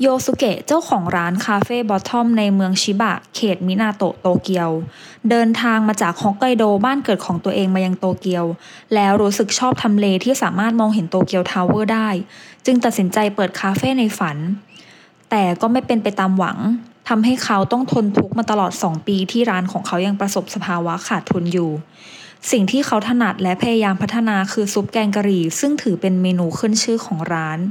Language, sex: English, female